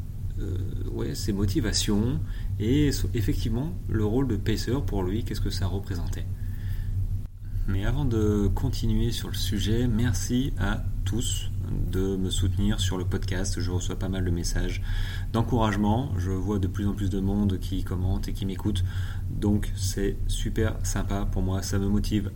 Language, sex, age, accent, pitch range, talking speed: French, male, 30-49, French, 95-105 Hz, 160 wpm